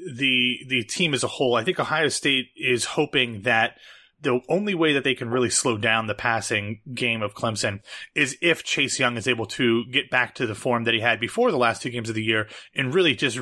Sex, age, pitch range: male, 30-49, 115-140 Hz